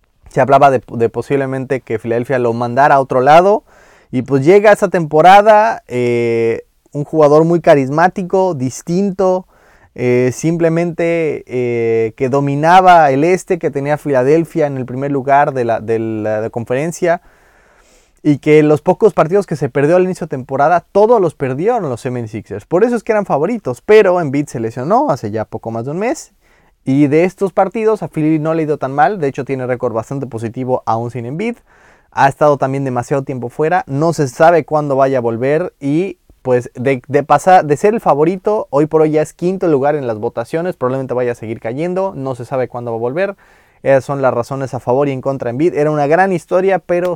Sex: male